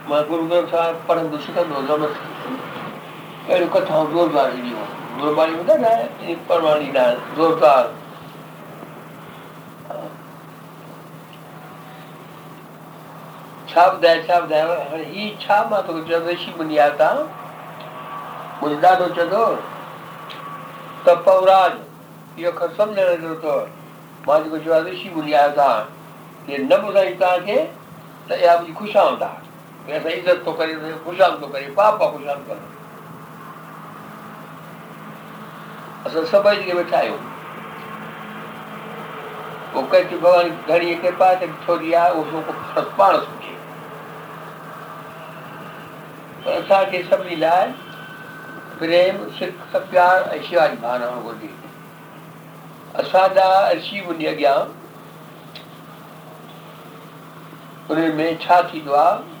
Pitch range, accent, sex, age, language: 155-185 Hz, native, male, 60-79, Hindi